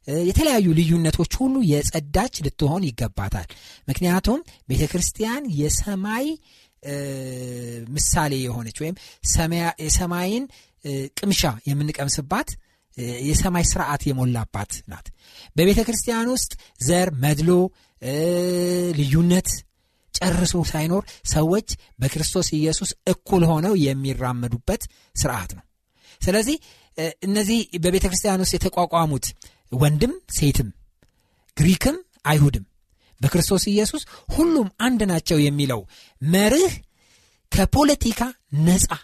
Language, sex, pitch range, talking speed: Amharic, male, 140-215 Hz, 80 wpm